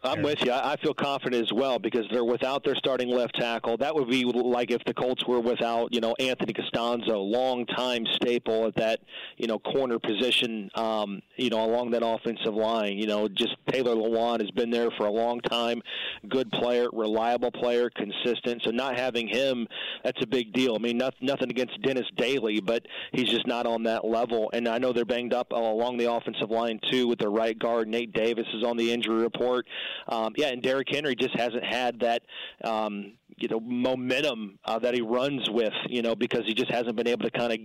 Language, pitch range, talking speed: English, 115-125 Hz, 210 wpm